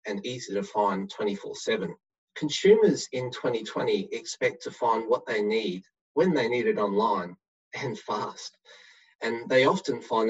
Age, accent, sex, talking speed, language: 30-49, Australian, male, 145 wpm, English